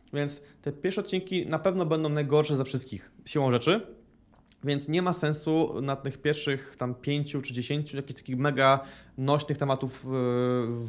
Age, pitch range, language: 20-39, 145-185 Hz, Polish